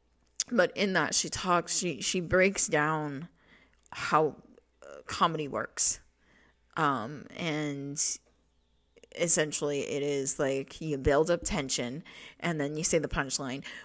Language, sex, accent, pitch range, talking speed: English, female, American, 140-175 Hz, 120 wpm